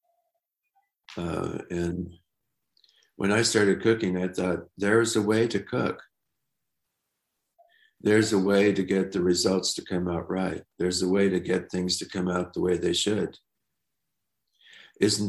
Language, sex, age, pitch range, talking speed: German, male, 60-79, 90-105 Hz, 150 wpm